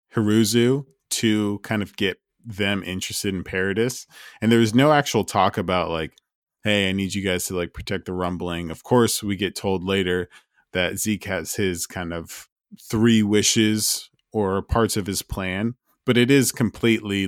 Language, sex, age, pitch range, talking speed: English, male, 20-39, 90-115 Hz, 175 wpm